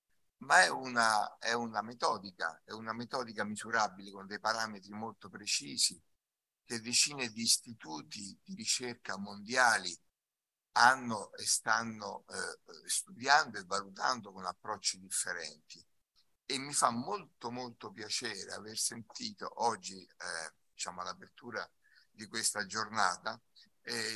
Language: Italian